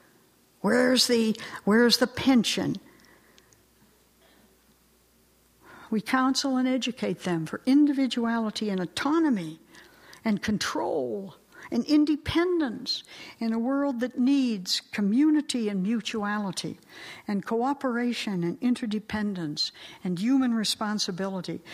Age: 60-79